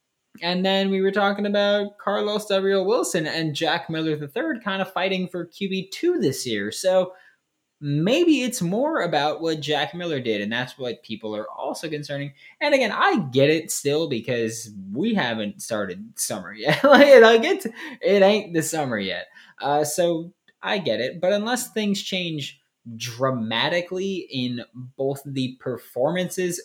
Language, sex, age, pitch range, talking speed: English, male, 20-39, 115-185 Hz, 155 wpm